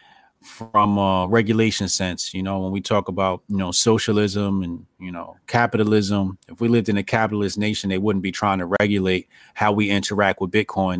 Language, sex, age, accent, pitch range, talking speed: English, male, 30-49, American, 90-105 Hz, 190 wpm